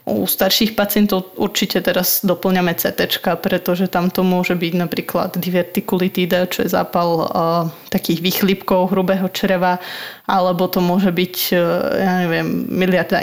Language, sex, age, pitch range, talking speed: Slovak, female, 20-39, 180-200 Hz, 135 wpm